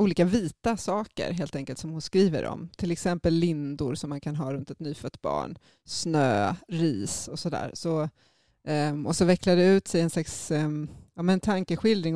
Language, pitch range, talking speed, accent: English, 150-180 Hz, 165 wpm, Swedish